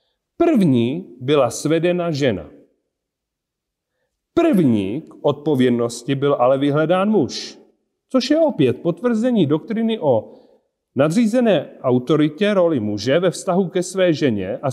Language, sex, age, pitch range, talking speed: Czech, male, 40-59, 145-220 Hz, 110 wpm